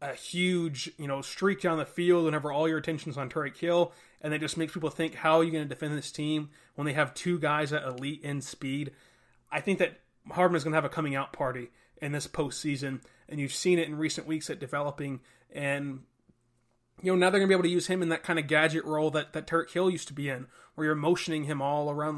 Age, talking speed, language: 20-39, 250 wpm, English